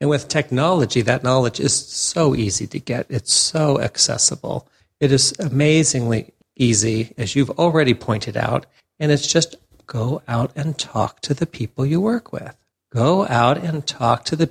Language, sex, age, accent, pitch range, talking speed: English, male, 50-69, American, 115-155 Hz, 170 wpm